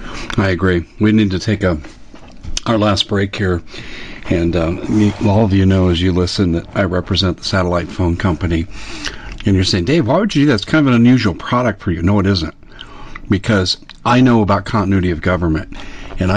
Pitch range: 95-115 Hz